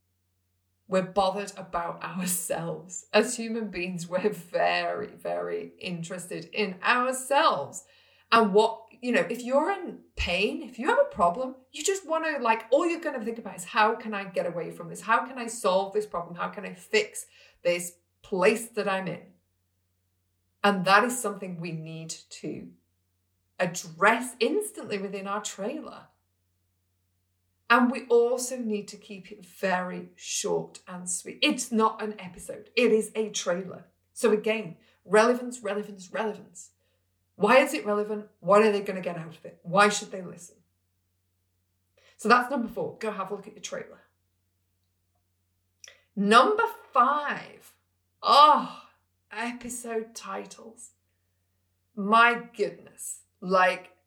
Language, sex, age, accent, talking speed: English, female, 30-49, British, 145 wpm